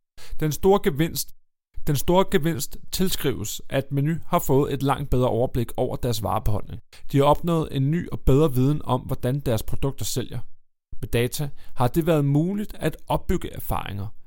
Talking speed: 160 wpm